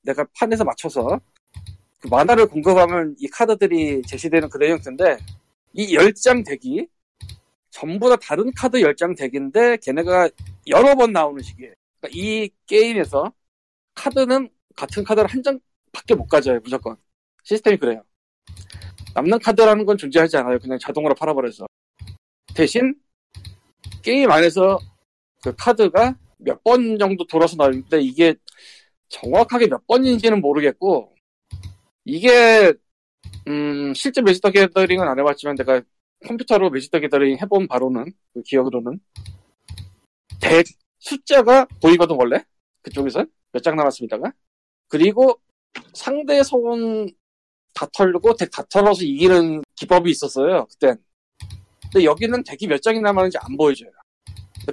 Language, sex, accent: Korean, male, native